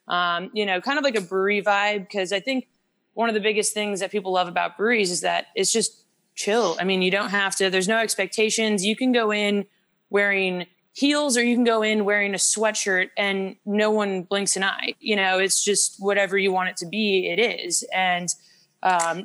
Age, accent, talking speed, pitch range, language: 20-39, American, 220 wpm, 175-200 Hz, English